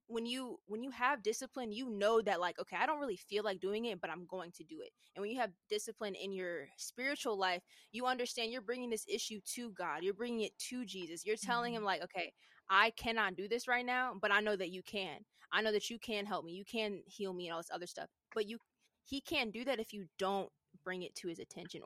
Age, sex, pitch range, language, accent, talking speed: 20-39, female, 190-230 Hz, English, American, 255 wpm